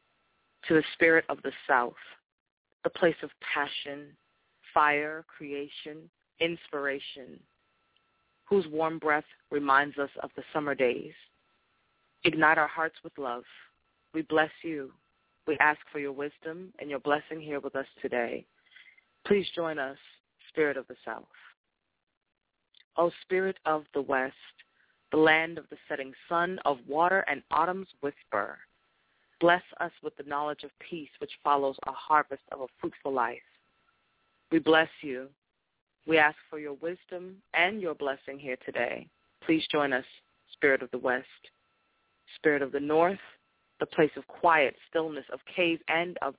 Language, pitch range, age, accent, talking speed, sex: English, 140-165 Hz, 30-49, American, 145 wpm, female